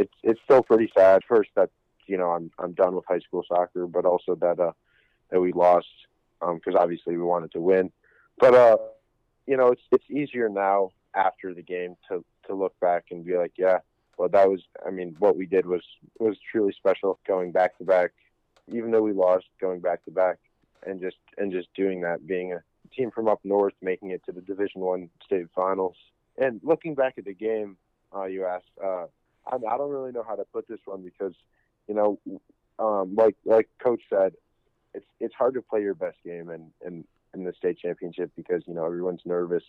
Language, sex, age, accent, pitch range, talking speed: English, male, 20-39, American, 90-110 Hz, 210 wpm